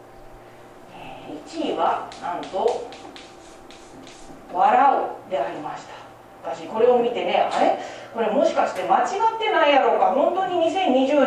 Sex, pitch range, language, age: female, 205-285 Hz, Japanese, 40-59